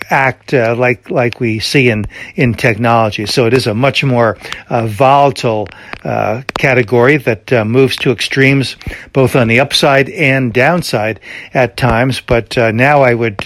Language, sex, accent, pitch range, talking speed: English, male, American, 115-135 Hz, 165 wpm